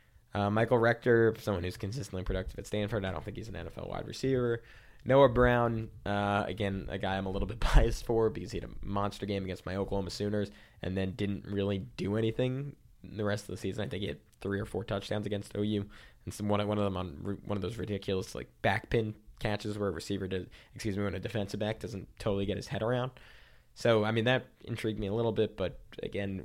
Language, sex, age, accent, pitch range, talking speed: English, male, 20-39, American, 95-110 Hz, 230 wpm